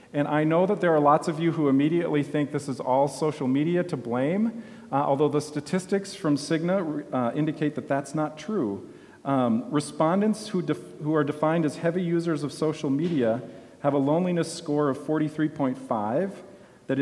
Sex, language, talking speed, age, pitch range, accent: male, English, 180 wpm, 40-59, 125-160 Hz, American